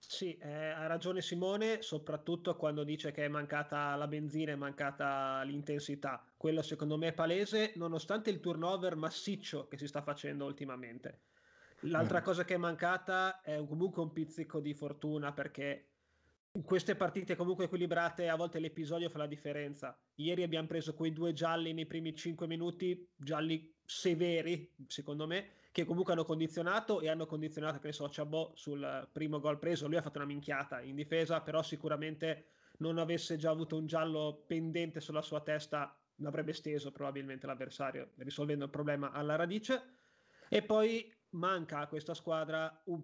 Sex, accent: male, native